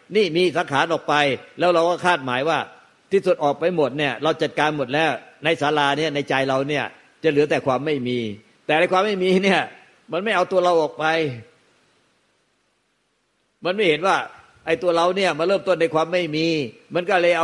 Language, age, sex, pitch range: Thai, 60-79, male, 140-170 Hz